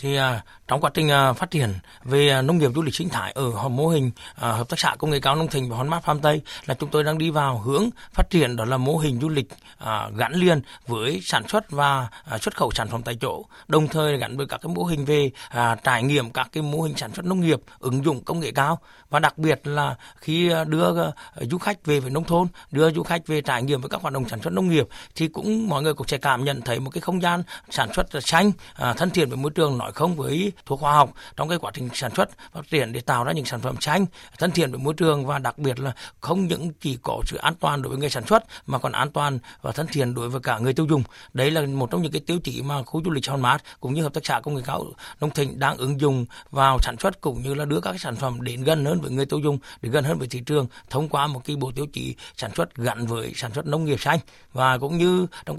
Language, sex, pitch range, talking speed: Vietnamese, male, 130-160 Hz, 270 wpm